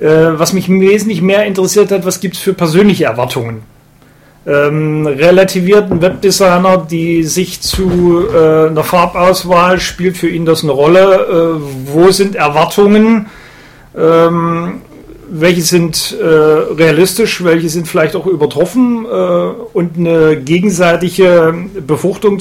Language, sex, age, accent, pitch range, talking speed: German, male, 40-59, German, 145-180 Hz, 125 wpm